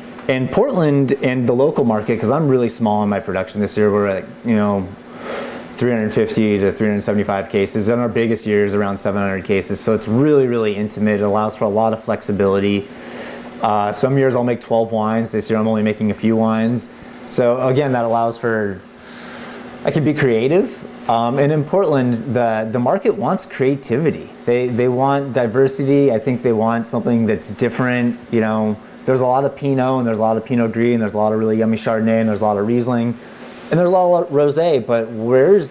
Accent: American